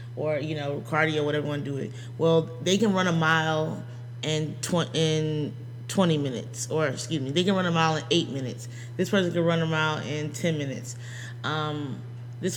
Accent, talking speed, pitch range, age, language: American, 190 wpm, 150-180 Hz, 20-39, English